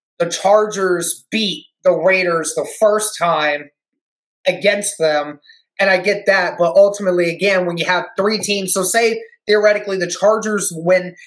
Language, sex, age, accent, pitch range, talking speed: English, male, 30-49, American, 170-205 Hz, 150 wpm